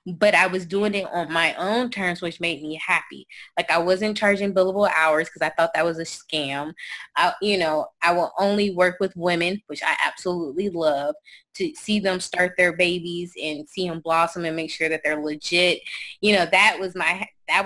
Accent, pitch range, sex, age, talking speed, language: American, 165-200 Hz, female, 20-39, 195 wpm, English